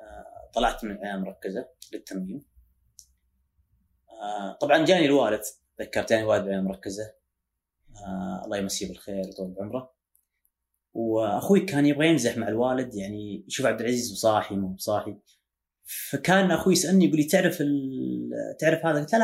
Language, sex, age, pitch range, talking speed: Arabic, female, 30-49, 95-145 Hz, 125 wpm